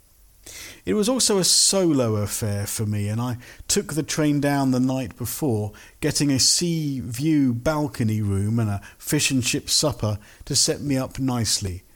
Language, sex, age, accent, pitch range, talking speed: English, male, 50-69, British, 105-145 Hz, 165 wpm